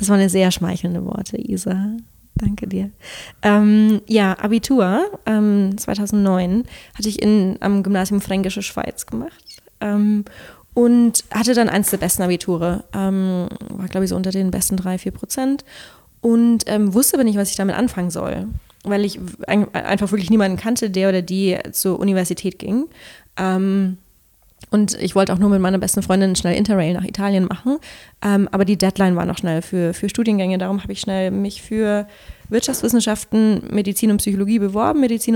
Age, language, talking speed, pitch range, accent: 20-39, German, 165 wpm, 190-215 Hz, German